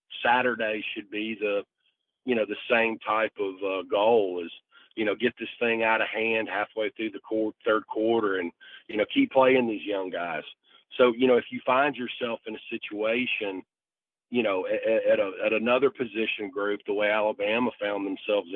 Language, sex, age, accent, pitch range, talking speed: English, male, 40-59, American, 105-125 Hz, 180 wpm